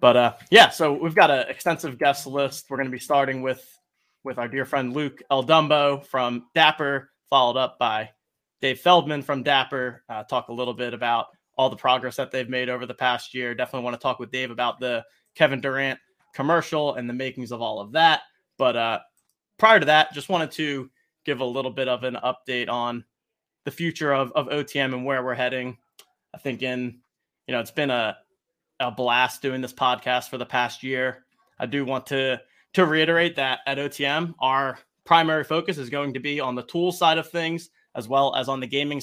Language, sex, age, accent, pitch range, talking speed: English, male, 20-39, American, 130-155 Hz, 210 wpm